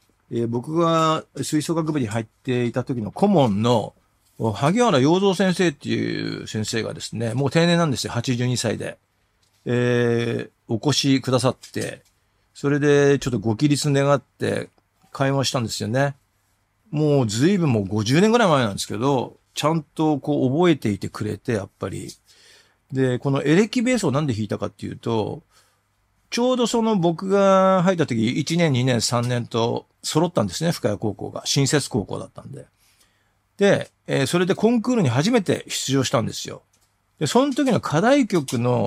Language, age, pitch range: Japanese, 40-59, 110-165 Hz